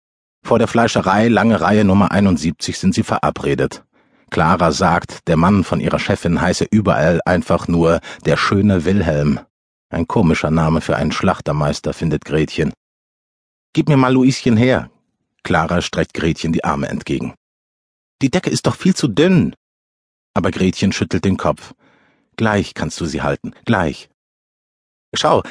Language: German